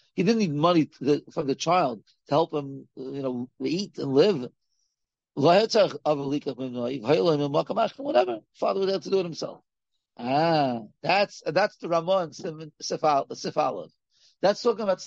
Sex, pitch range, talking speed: male, 150-195 Hz, 130 wpm